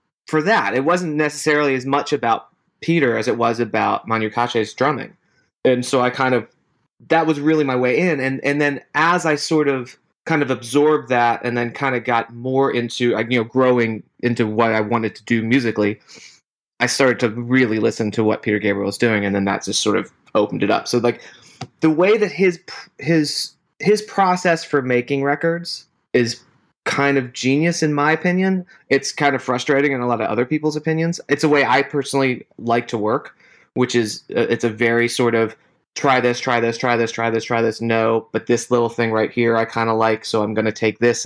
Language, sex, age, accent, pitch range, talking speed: English, male, 30-49, American, 115-145 Hz, 215 wpm